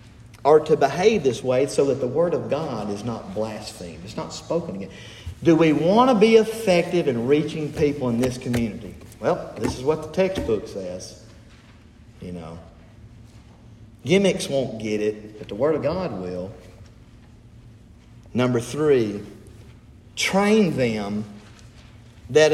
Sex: male